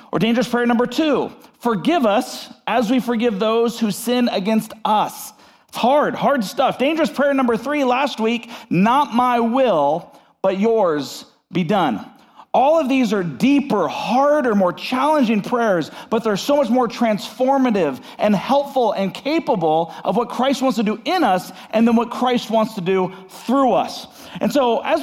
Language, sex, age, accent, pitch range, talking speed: English, male, 40-59, American, 215-280 Hz, 170 wpm